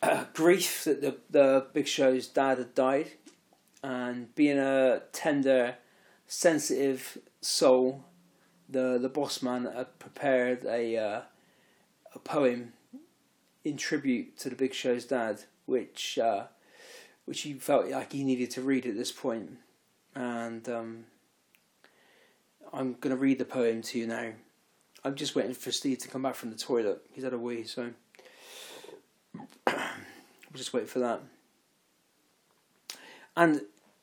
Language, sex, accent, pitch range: English, male, British, 125-145 Hz